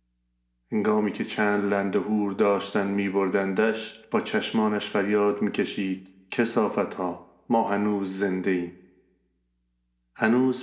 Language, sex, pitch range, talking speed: Persian, male, 90-100 Hz, 95 wpm